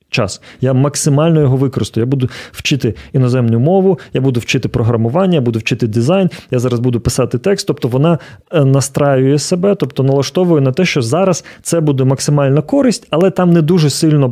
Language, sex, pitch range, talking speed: Ukrainian, male, 120-150 Hz, 175 wpm